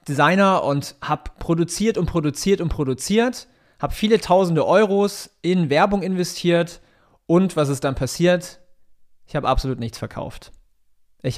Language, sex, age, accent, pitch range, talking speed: German, male, 30-49, German, 130-175 Hz, 135 wpm